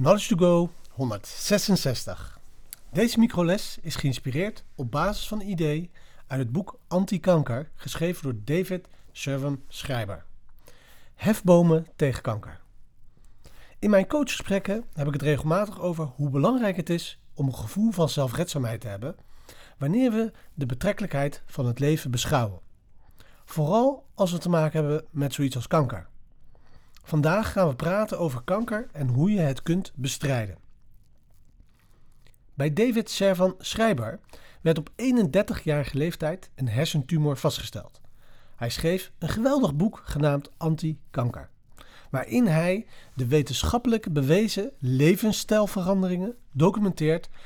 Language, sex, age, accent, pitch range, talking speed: Dutch, male, 40-59, Dutch, 130-190 Hz, 125 wpm